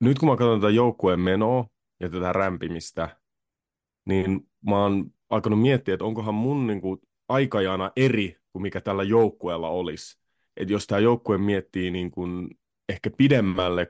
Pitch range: 90-105 Hz